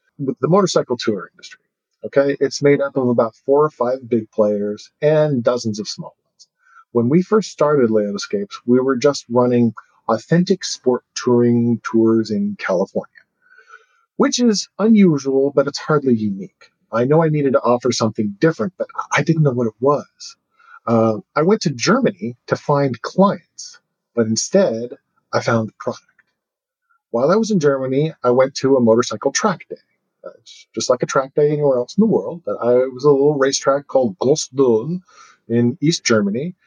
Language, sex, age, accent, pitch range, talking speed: English, male, 40-59, American, 120-170 Hz, 170 wpm